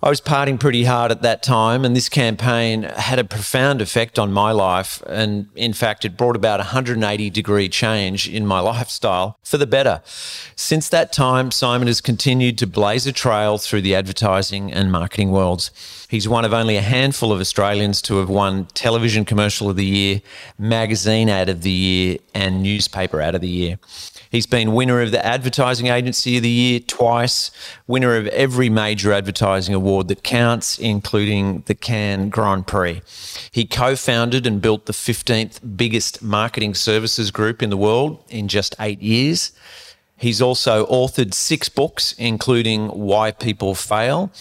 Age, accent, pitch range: 40-59, Australian, 100-120 Hz